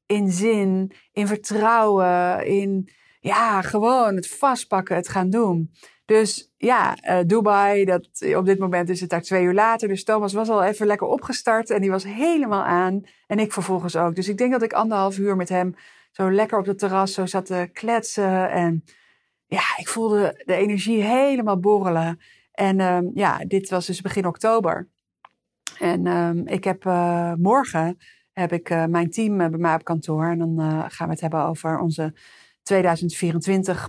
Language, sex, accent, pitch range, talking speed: Dutch, female, Dutch, 175-215 Hz, 180 wpm